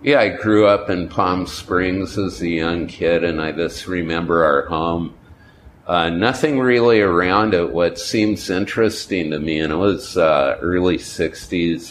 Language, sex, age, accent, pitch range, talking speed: English, male, 50-69, American, 80-100 Hz, 165 wpm